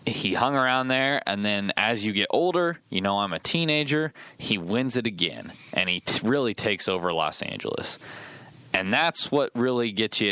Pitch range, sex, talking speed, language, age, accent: 100-145 Hz, male, 190 wpm, English, 20-39, American